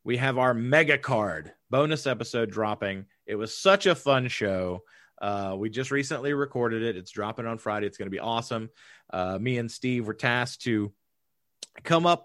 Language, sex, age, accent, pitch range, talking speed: English, male, 30-49, American, 110-155 Hz, 185 wpm